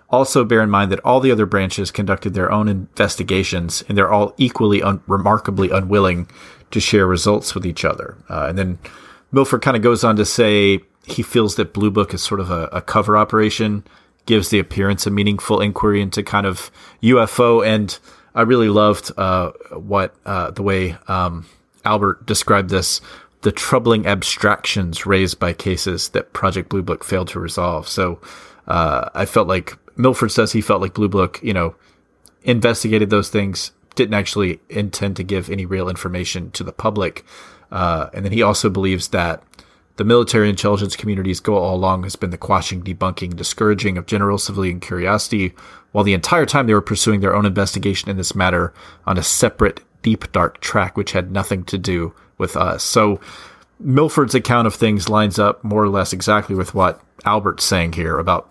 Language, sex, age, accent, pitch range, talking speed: English, male, 30-49, American, 95-105 Hz, 185 wpm